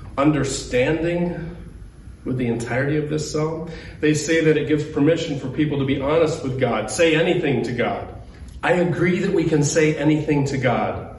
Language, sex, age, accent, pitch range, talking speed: English, male, 40-59, American, 150-210 Hz, 175 wpm